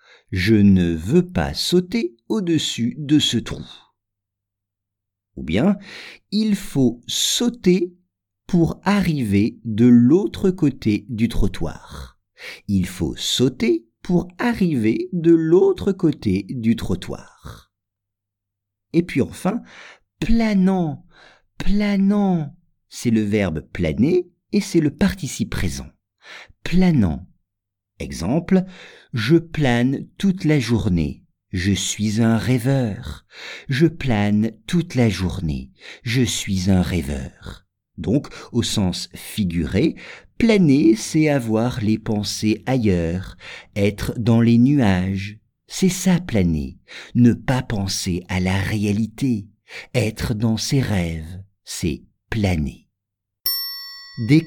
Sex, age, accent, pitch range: male, 50-69, French, 100-170 Hz